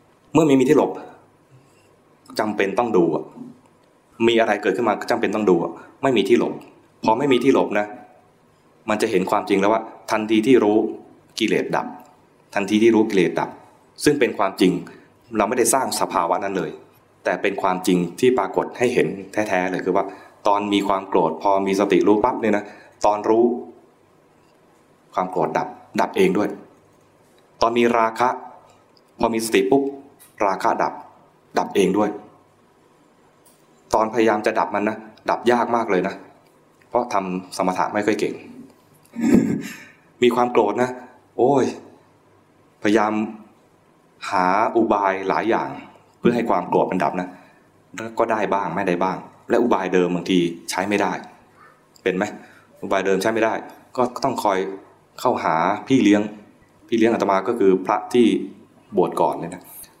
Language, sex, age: English, male, 20-39